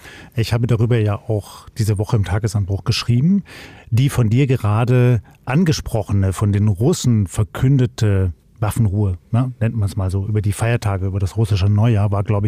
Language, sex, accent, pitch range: German, male, German, 105-130 Hz